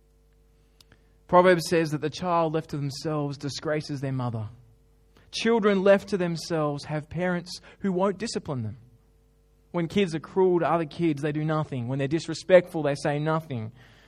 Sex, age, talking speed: male, 20-39, 160 wpm